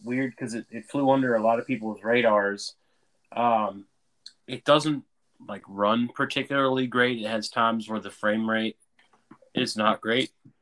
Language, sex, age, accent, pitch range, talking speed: English, male, 20-39, American, 105-130 Hz, 160 wpm